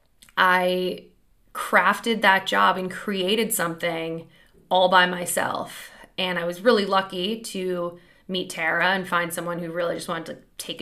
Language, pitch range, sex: English, 175-200 Hz, female